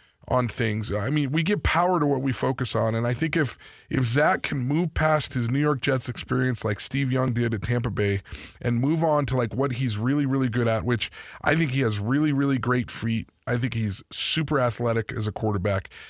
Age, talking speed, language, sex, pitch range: 20-39, 225 wpm, English, male, 110-140 Hz